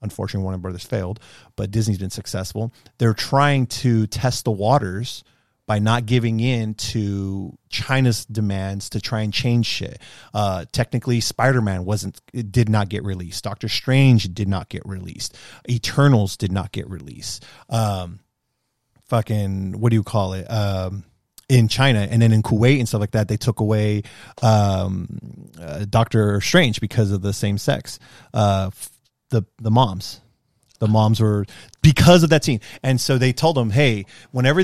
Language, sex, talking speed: English, male, 165 wpm